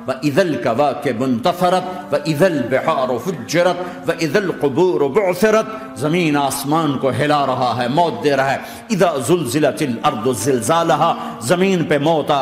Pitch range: 135-180 Hz